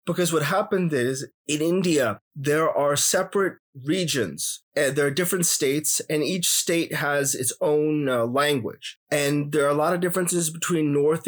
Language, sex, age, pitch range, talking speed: English, male, 30-49, 140-165 Hz, 175 wpm